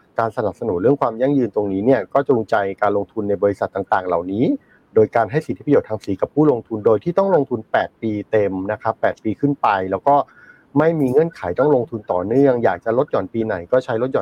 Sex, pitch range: male, 110-140 Hz